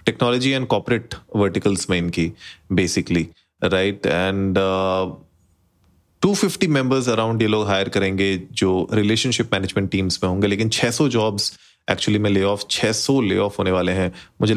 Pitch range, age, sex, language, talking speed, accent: 95-110 Hz, 30-49, male, Hindi, 160 wpm, native